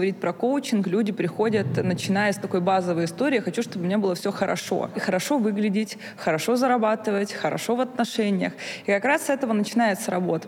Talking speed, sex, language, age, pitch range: 185 wpm, female, Russian, 20-39, 185-230 Hz